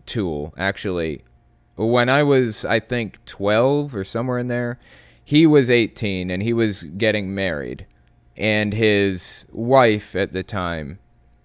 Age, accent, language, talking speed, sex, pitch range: 30-49, American, English, 135 wpm, male, 85-115 Hz